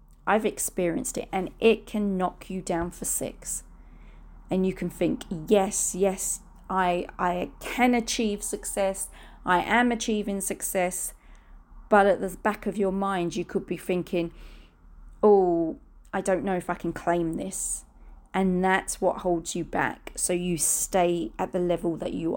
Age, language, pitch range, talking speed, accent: 30-49, English, 165-205 Hz, 160 wpm, British